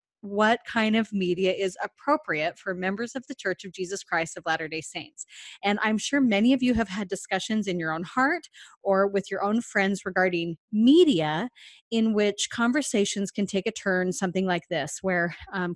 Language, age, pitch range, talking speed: English, 30-49, 185-230 Hz, 185 wpm